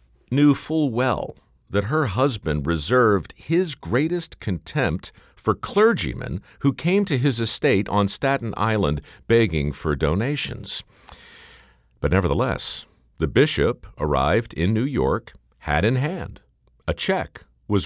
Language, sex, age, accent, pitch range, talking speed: English, male, 50-69, American, 85-140 Hz, 125 wpm